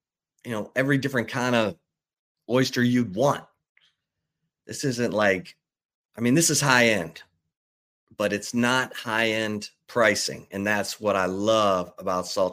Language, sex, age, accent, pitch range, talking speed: English, male, 30-49, American, 95-120 Hz, 150 wpm